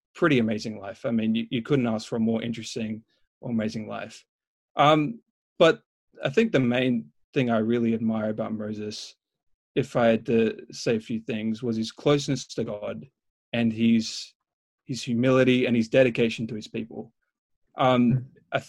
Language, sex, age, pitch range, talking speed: English, male, 20-39, 110-135 Hz, 170 wpm